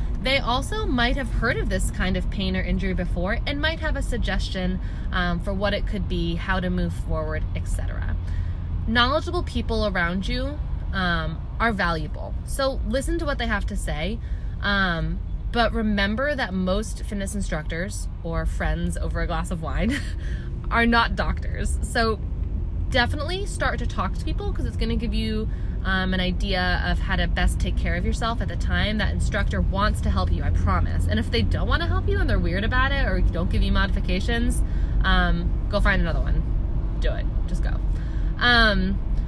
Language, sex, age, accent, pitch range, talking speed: English, female, 20-39, American, 85-100 Hz, 190 wpm